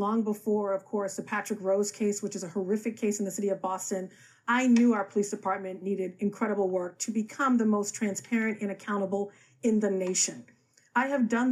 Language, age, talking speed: English, 40-59, 205 wpm